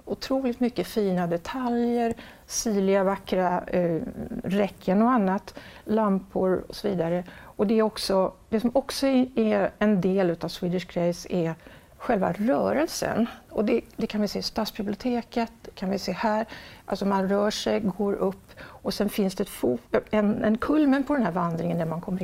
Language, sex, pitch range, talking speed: Swedish, female, 180-225 Hz, 175 wpm